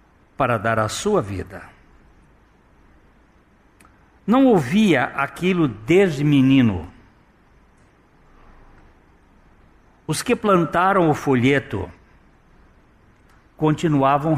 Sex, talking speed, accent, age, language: male, 65 wpm, Brazilian, 60-79, Portuguese